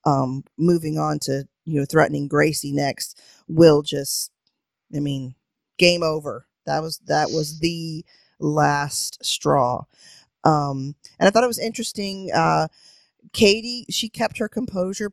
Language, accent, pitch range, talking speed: English, American, 145-185 Hz, 140 wpm